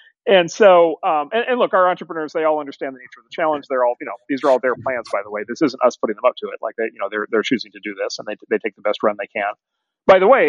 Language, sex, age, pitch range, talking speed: English, male, 40-59, 110-165 Hz, 330 wpm